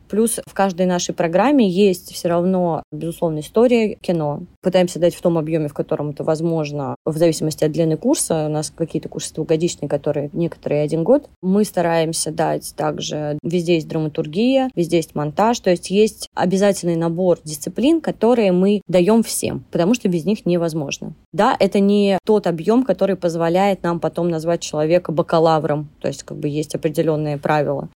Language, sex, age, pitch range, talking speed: Russian, female, 20-39, 155-195 Hz, 165 wpm